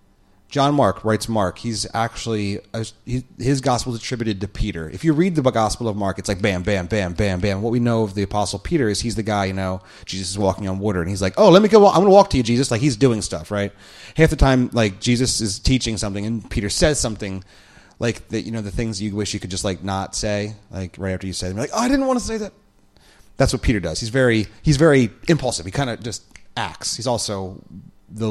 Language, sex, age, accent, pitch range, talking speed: English, male, 30-49, American, 95-130 Hz, 255 wpm